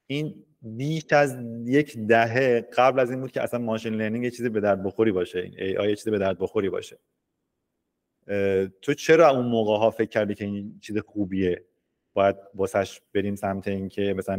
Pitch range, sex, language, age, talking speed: 100-125 Hz, male, Persian, 30-49, 185 wpm